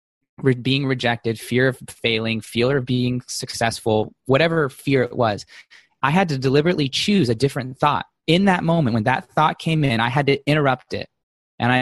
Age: 20-39